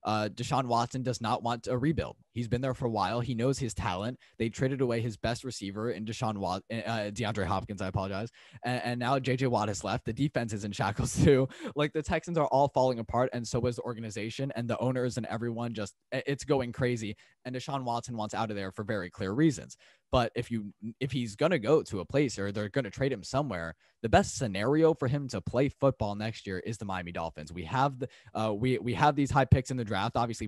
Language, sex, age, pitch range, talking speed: English, male, 10-29, 105-130 Hz, 240 wpm